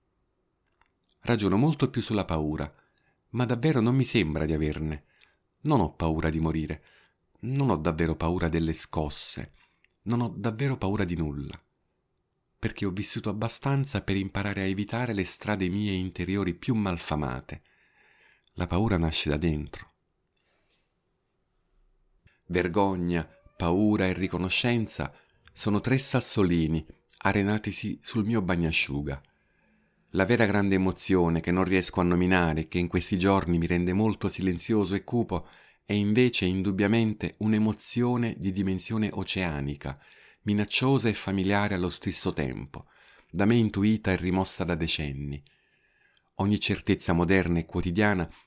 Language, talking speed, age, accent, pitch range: Italian, 130 wpm, 50-69, native, 85-105 Hz